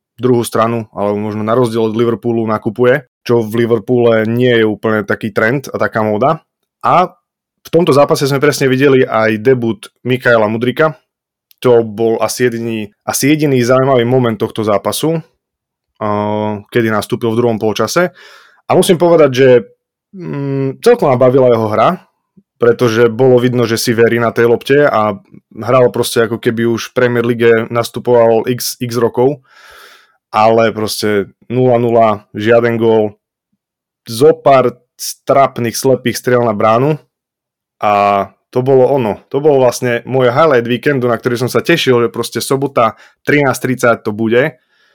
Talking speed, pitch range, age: 145 wpm, 115-130 Hz, 20-39